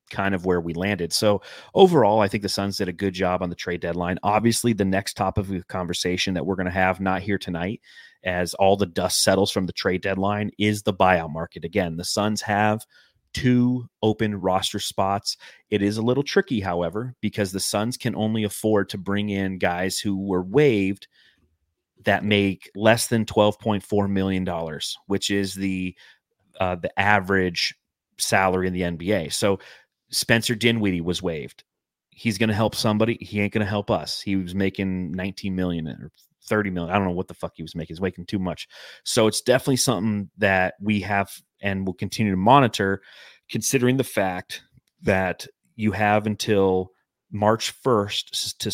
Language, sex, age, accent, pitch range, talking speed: English, male, 30-49, American, 95-105 Hz, 185 wpm